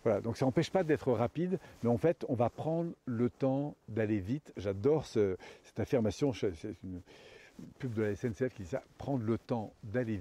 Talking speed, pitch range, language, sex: 200 wpm, 110-135 Hz, French, male